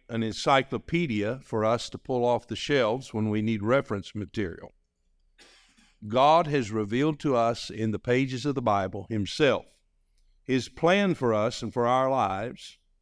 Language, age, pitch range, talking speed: English, 50-69, 105-130 Hz, 155 wpm